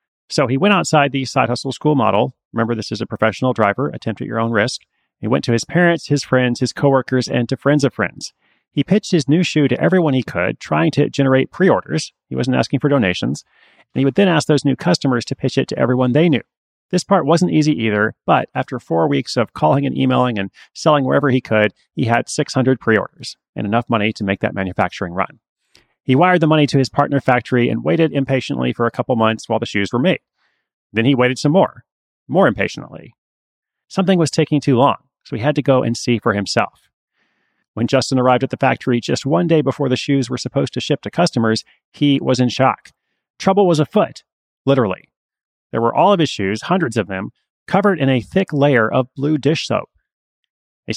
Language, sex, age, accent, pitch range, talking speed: English, male, 30-49, American, 115-150 Hz, 215 wpm